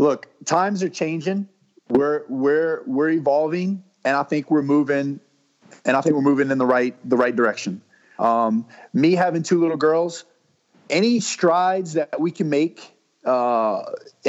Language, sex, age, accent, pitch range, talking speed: English, male, 30-49, American, 140-175 Hz, 155 wpm